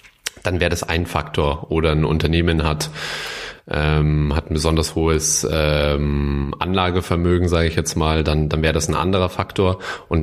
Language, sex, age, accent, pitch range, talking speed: German, male, 30-49, German, 80-90 Hz, 165 wpm